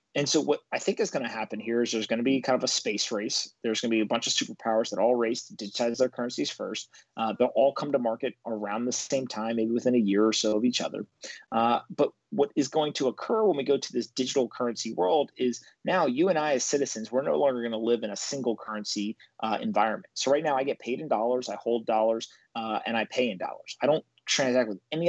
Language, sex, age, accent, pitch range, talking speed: English, male, 30-49, American, 110-135 Hz, 255 wpm